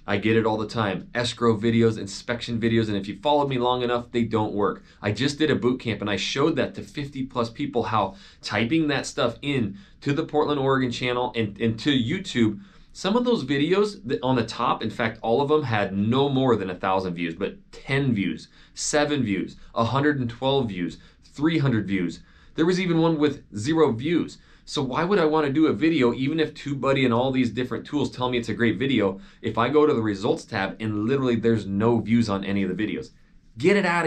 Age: 20-39